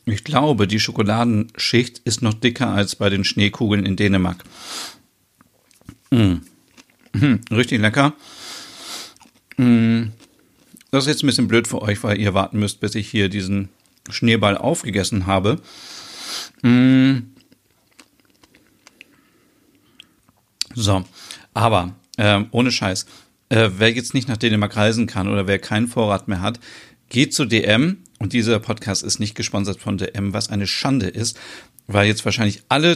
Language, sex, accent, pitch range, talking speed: German, male, German, 100-125 Hz, 135 wpm